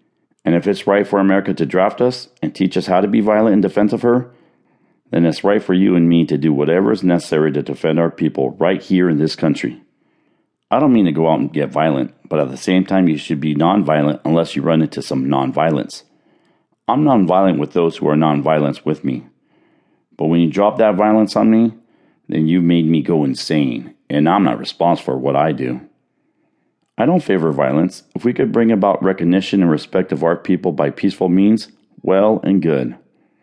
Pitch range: 80-105 Hz